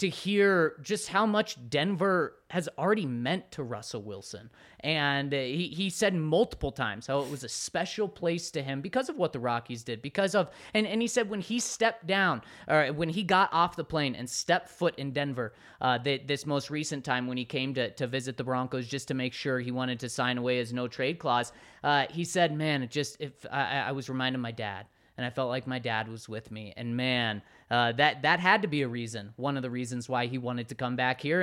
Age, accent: 30-49, American